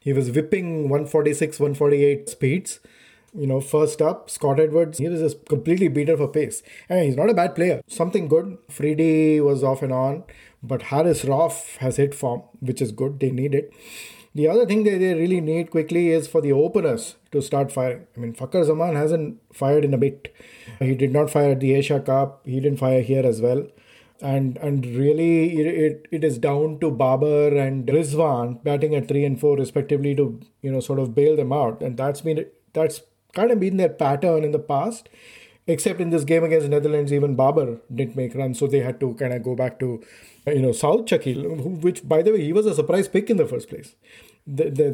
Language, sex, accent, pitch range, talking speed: English, male, Indian, 135-165 Hz, 220 wpm